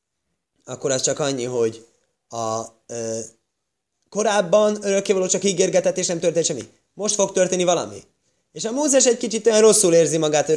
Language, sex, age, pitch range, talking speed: Hungarian, male, 20-39, 140-215 Hz, 160 wpm